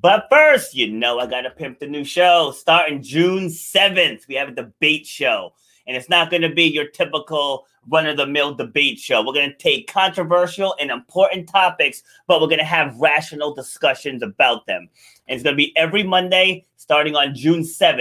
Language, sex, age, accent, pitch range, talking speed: English, male, 30-49, American, 145-190 Hz, 190 wpm